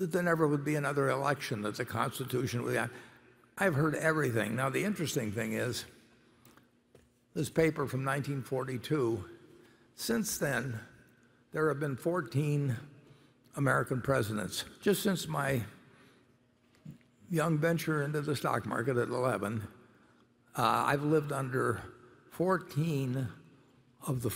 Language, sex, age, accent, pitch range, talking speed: English, male, 60-79, American, 120-155 Hz, 125 wpm